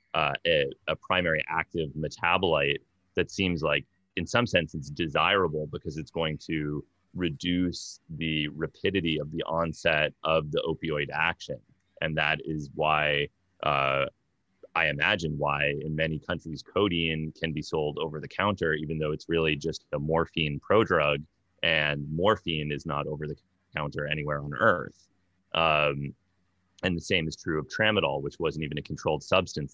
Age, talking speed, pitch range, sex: 30-49, 155 wpm, 75-85 Hz, male